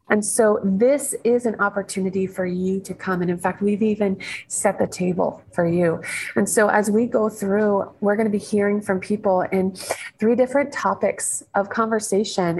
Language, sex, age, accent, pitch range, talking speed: English, female, 30-49, American, 185-220 Hz, 185 wpm